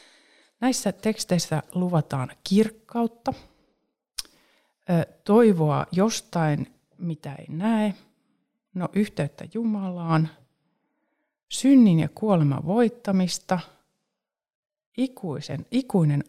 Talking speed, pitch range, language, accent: 60 wpm, 160-220 Hz, Finnish, native